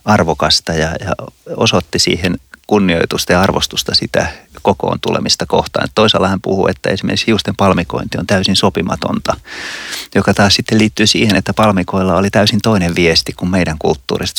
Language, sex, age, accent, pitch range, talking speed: Finnish, male, 30-49, native, 90-105 Hz, 150 wpm